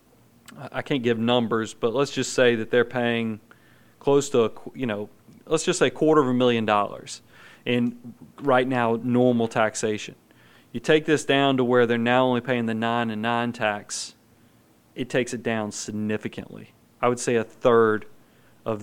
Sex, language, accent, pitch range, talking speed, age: male, English, American, 115-135 Hz, 195 wpm, 30-49